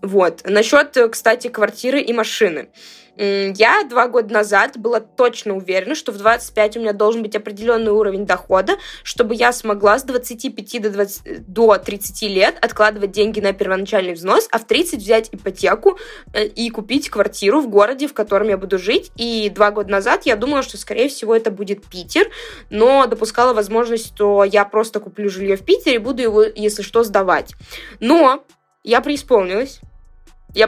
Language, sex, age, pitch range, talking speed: Russian, female, 20-39, 210-265 Hz, 165 wpm